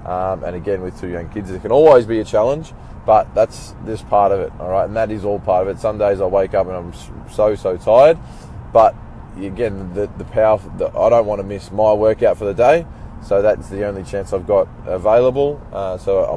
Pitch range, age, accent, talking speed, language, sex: 95-115 Hz, 20-39, Australian, 240 wpm, English, male